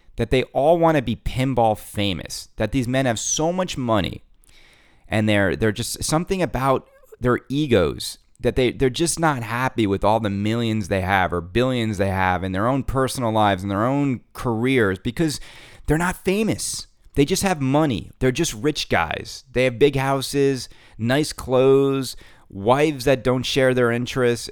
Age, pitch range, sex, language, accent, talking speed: 30-49, 105-140 Hz, male, English, American, 180 wpm